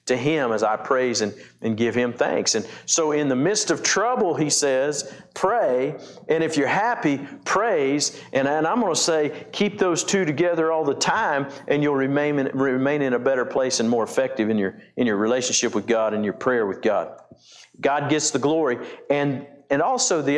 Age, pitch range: 50-69, 125-160 Hz